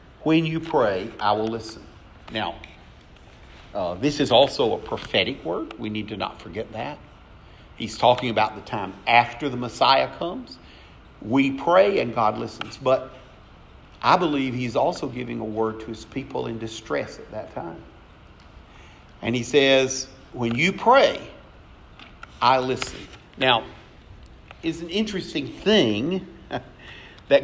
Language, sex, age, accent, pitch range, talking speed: English, male, 50-69, American, 110-145 Hz, 140 wpm